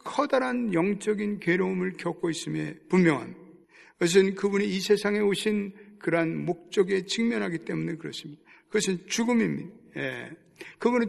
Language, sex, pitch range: Korean, male, 160-225 Hz